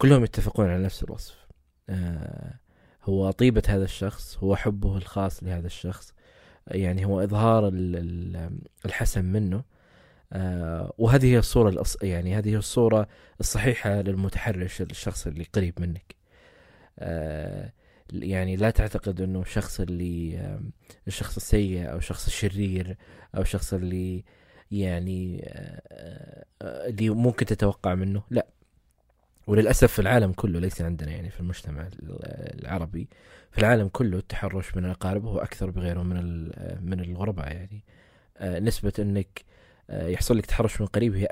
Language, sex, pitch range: Arabic, male, 90-105 Hz